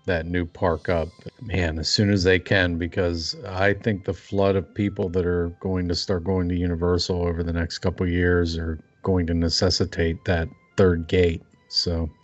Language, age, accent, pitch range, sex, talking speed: English, 40-59, American, 90-110 Hz, male, 190 wpm